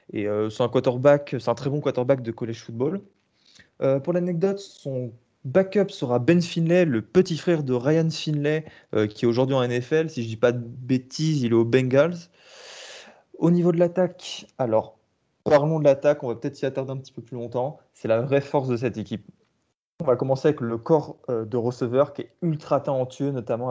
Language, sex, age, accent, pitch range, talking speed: French, male, 20-39, French, 120-150 Hz, 210 wpm